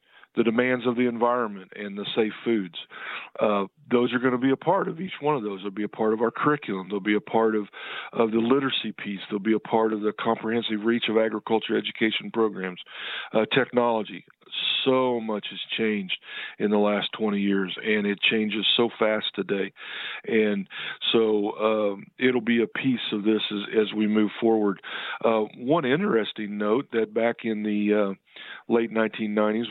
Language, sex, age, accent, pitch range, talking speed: English, male, 50-69, American, 105-115 Hz, 185 wpm